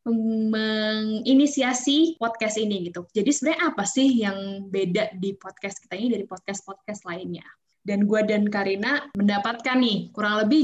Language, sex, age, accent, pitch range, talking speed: Indonesian, female, 10-29, native, 195-250 Hz, 140 wpm